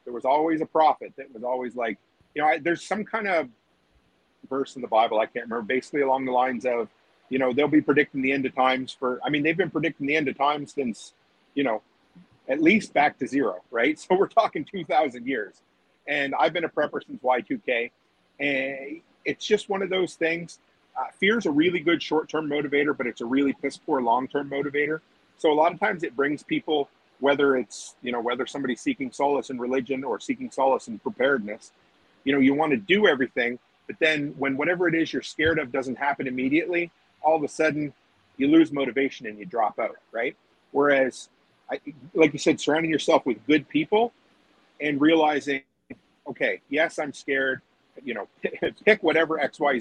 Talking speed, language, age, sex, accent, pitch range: 195 wpm, English, 40-59, male, American, 130-160 Hz